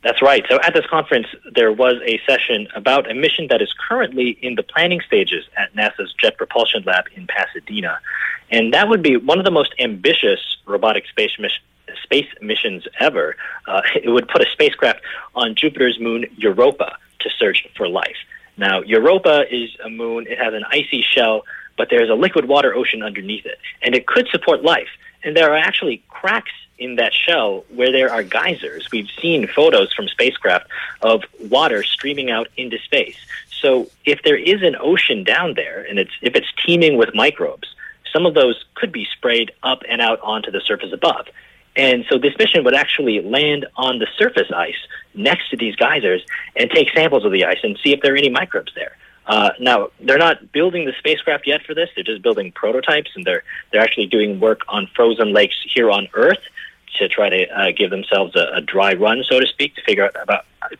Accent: American